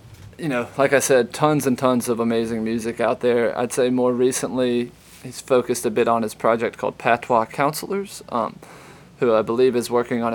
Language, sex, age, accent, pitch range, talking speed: English, male, 20-39, American, 115-130 Hz, 195 wpm